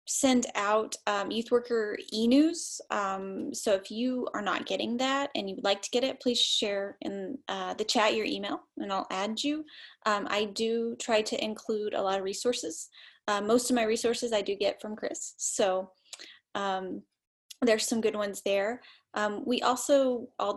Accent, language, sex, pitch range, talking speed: American, English, female, 195-245 Hz, 180 wpm